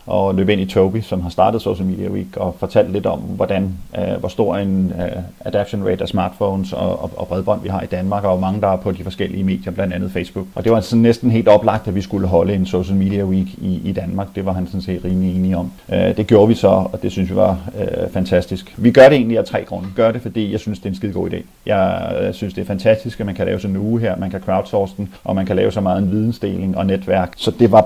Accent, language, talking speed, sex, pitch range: native, Danish, 280 wpm, male, 95-110 Hz